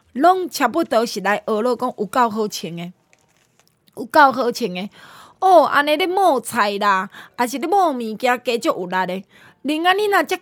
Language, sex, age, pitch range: Chinese, female, 20-39, 210-295 Hz